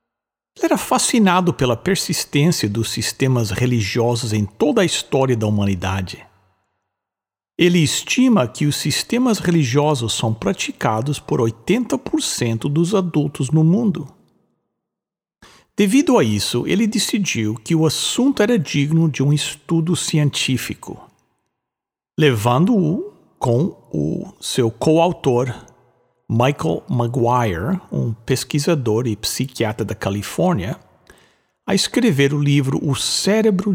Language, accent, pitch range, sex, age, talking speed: English, Brazilian, 120-190 Hz, male, 60-79, 110 wpm